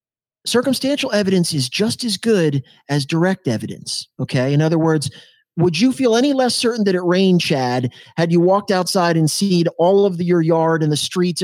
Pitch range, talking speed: 145-190 Hz, 190 wpm